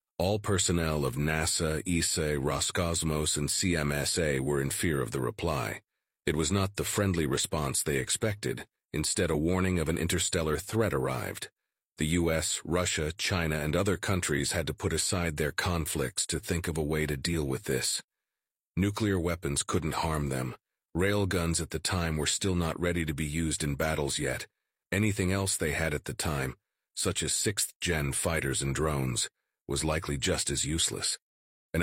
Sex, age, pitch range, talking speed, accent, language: male, 40-59, 75-90 Hz, 170 wpm, American, English